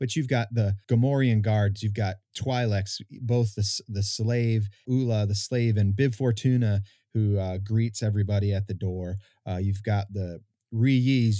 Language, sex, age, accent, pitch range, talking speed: English, male, 30-49, American, 100-120 Hz, 165 wpm